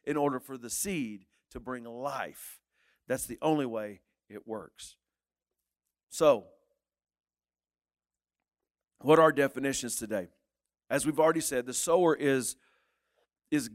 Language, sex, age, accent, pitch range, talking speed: English, male, 50-69, American, 130-165 Hz, 120 wpm